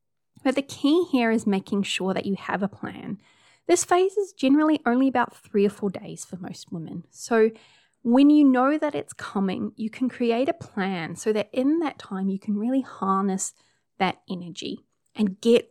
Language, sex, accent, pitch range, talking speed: English, female, Australian, 195-270 Hz, 190 wpm